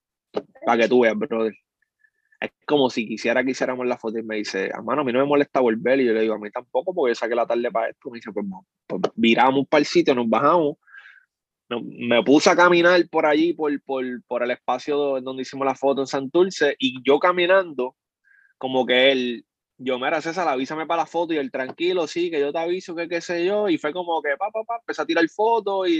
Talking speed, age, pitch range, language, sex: 240 wpm, 20-39, 125-160 Hz, Spanish, male